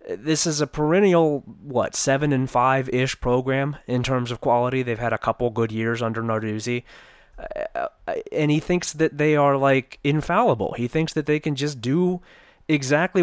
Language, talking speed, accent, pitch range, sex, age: English, 165 wpm, American, 115-155 Hz, male, 20-39